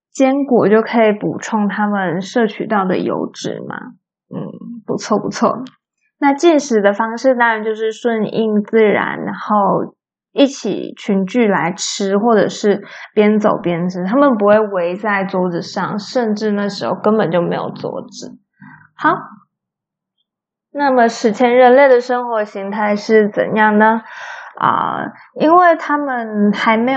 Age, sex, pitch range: 20-39, female, 205-245 Hz